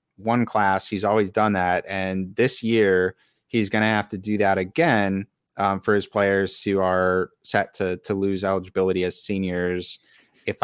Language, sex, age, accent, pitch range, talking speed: English, male, 30-49, American, 90-105 Hz, 170 wpm